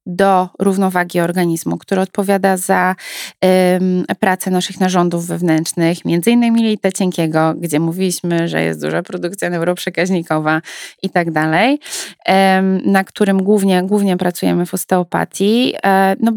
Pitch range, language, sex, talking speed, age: 175-200 Hz, Polish, female, 120 wpm, 20-39